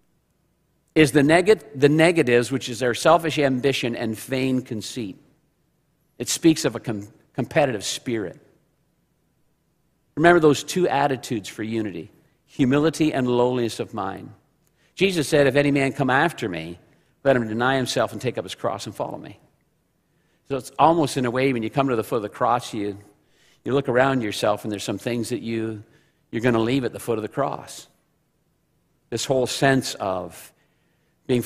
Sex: male